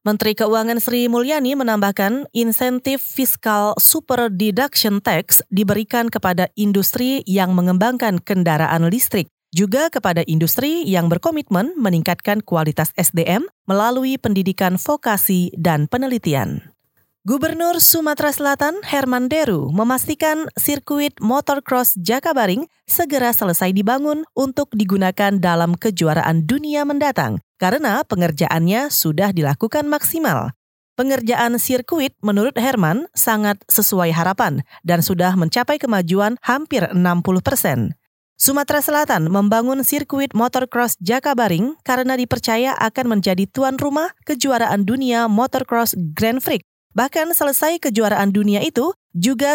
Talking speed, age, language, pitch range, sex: 110 wpm, 30-49, Indonesian, 190-270 Hz, female